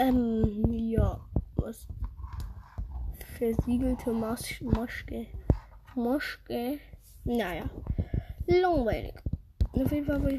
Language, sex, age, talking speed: English, female, 10-29, 70 wpm